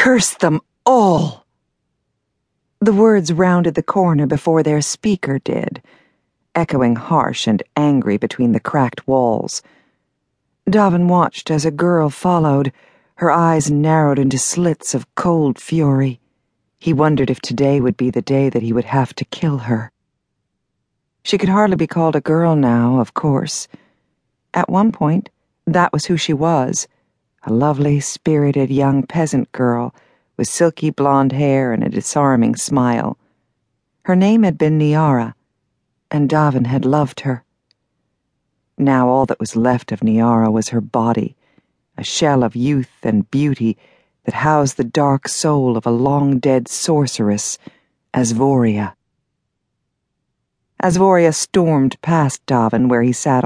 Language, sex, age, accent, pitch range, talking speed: English, female, 50-69, American, 125-160 Hz, 140 wpm